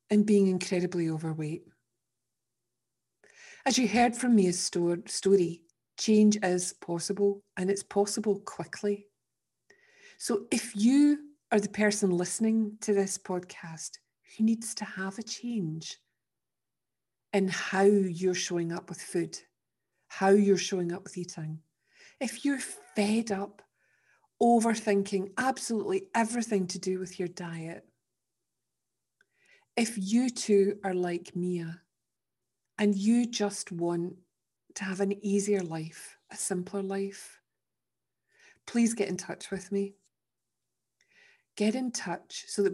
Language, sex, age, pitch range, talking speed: English, female, 40-59, 180-225 Hz, 125 wpm